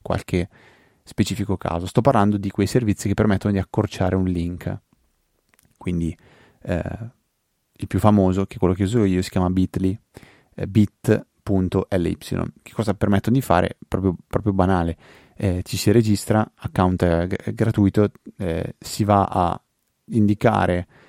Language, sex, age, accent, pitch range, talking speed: Italian, male, 30-49, native, 95-110 Hz, 135 wpm